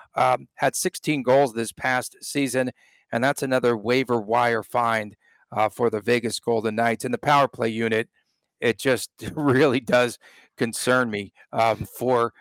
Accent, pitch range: American, 115-140 Hz